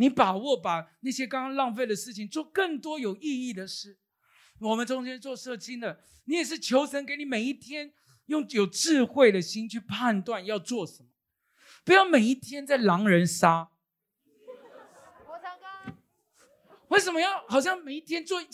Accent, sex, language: native, male, Chinese